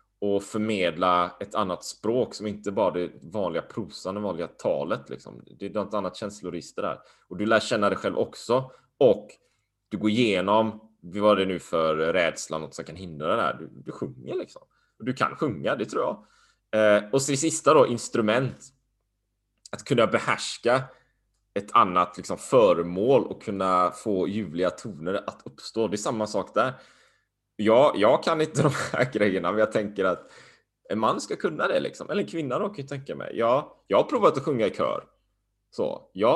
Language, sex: Swedish, male